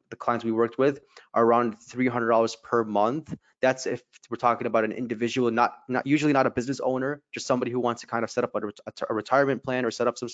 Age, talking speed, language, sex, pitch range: 20-39, 245 wpm, English, male, 115-130 Hz